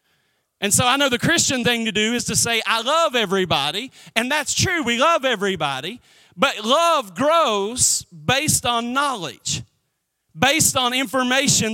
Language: English